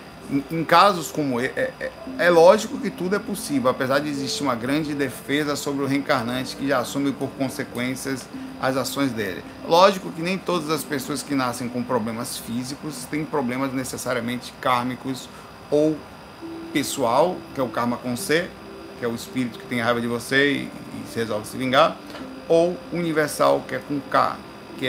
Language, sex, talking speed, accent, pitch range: Portuguese, male, 175 wpm, Brazilian, 125-155 Hz